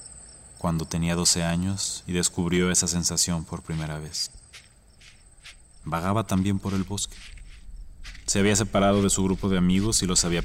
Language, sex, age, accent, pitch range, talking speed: Spanish, male, 30-49, Mexican, 85-95 Hz, 155 wpm